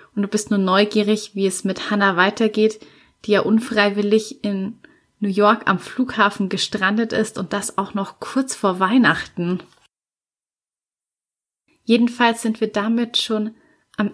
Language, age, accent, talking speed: German, 30-49, German, 140 wpm